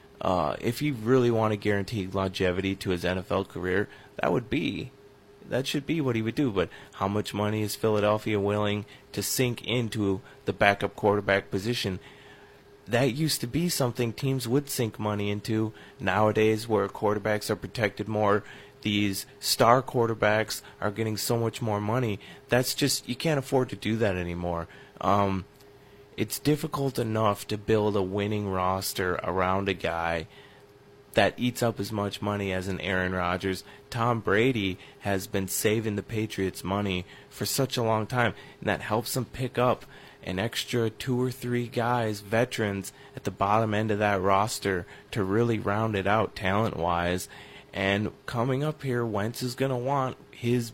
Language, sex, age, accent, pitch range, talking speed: English, male, 30-49, American, 100-125 Hz, 165 wpm